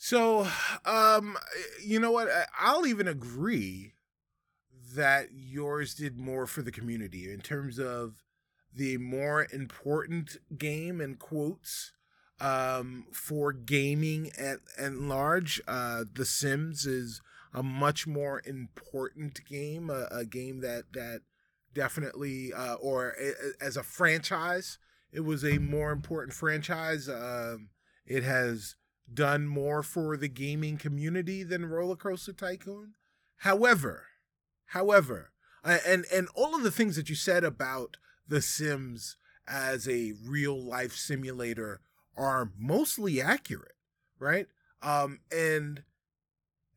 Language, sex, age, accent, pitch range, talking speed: English, male, 20-39, American, 130-165 Hz, 120 wpm